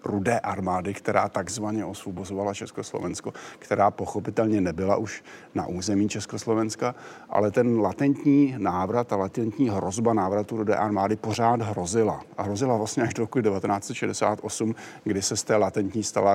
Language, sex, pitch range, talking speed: Slovak, male, 100-115 Hz, 130 wpm